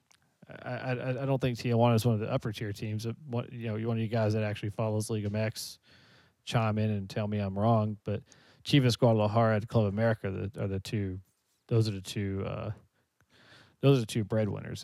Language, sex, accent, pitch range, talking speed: English, male, American, 105-125 Hz, 220 wpm